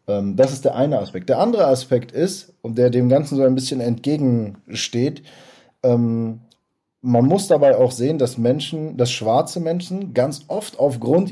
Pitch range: 120-150 Hz